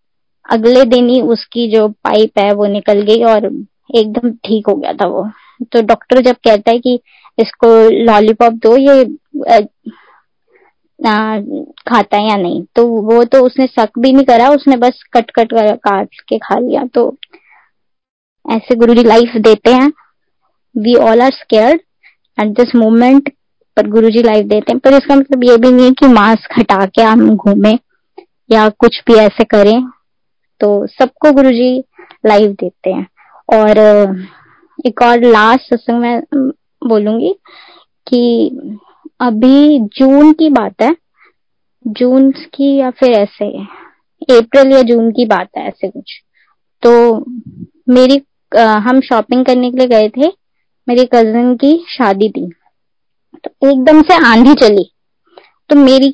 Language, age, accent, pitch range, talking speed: Hindi, 20-39, native, 225-275 Hz, 145 wpm